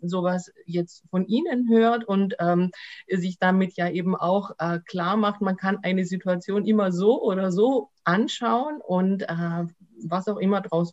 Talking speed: 165 wpm